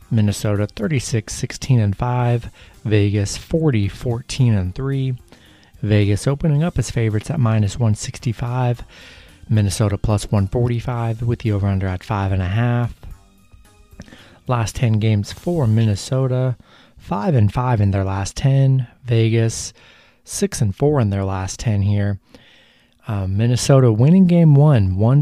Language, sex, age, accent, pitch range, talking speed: English, male, 30-49, American, 100-125 Hz, 135 wpm